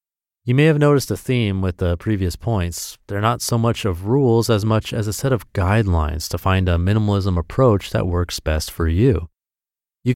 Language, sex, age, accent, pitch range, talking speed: English, male, 30-49, American, 90-125 Hz, 200 wpm